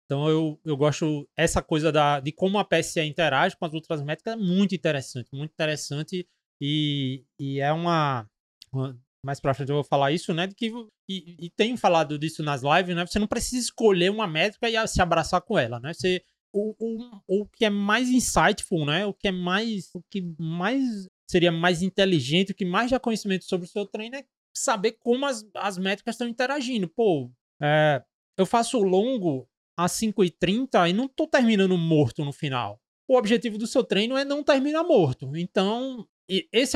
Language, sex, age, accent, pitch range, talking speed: Portuguese, male, 20-39, Brazilian, 155-210 Hz, 195 wpm